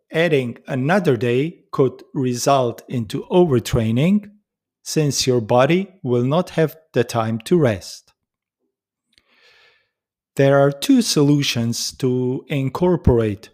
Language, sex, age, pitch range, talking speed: English, male, 40-59, 120-160 Hz, 100 wpm